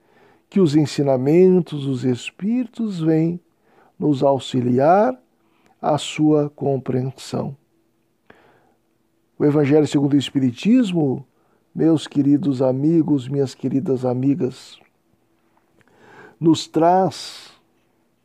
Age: 60-79